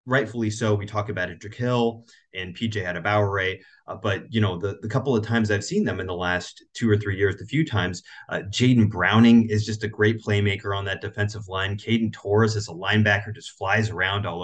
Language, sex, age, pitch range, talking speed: English, male, 30-49, 95-110 Hz, 235 wpm